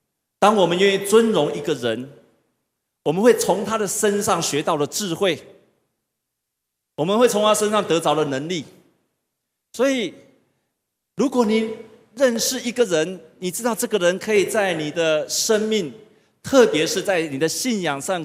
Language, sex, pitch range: Chinese, male, 145-220 Hz